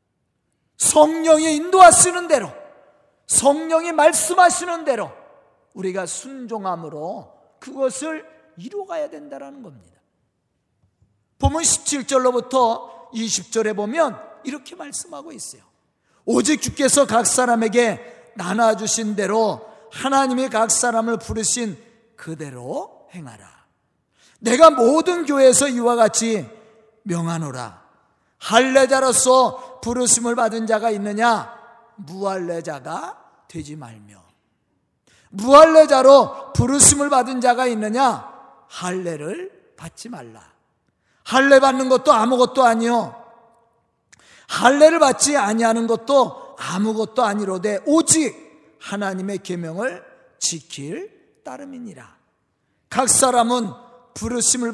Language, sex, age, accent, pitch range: Korean, male, 40-59, native, 200-270 Hz